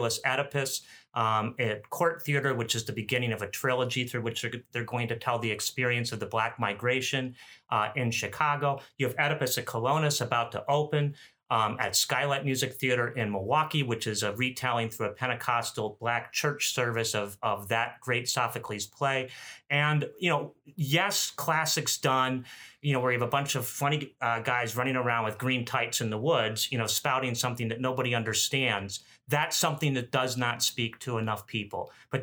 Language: English